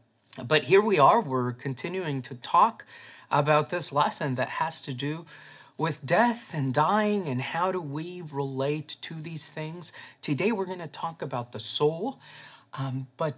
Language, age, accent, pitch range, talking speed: English, 30-49, American, 125-150 Hz, 165 wpm